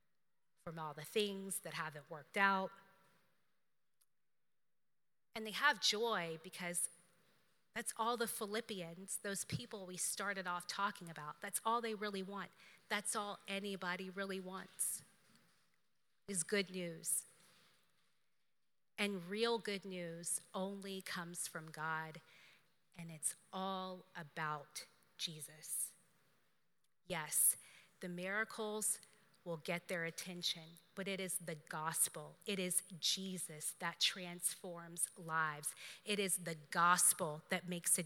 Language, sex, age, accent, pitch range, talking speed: English, female, 30-49, American, 170-200 Hz, 120 wpm